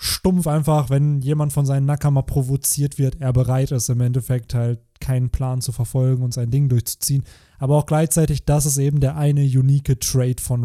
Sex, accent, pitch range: male, German, 125-145 Hz